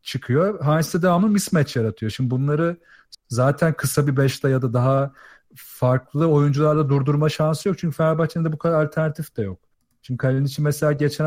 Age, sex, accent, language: 40-59, male, native, Turkish